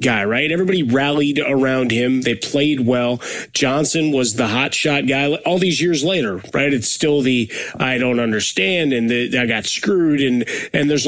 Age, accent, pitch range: 30-49, American, 130-160 Hz